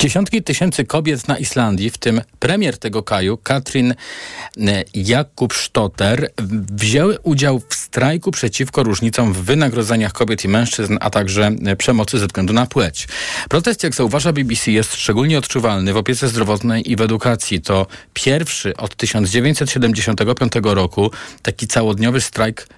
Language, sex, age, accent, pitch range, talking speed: Polish, male, 40-59, native, 100-125 Hz, 135 wpm